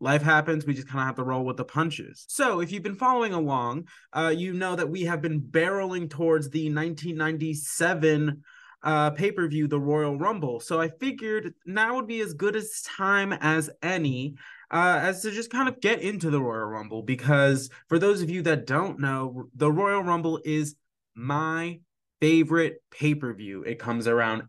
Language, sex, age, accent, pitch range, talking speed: English, male, 20-39, American, 145-195 Hz, 185 wpm